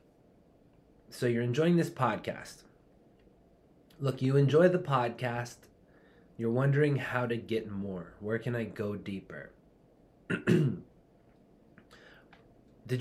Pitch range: 115-135 Hz